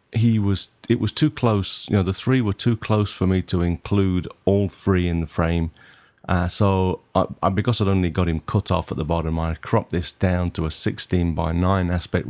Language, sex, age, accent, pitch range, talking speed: English, male, 30-49, British, 85-105 Hz, 225 wpm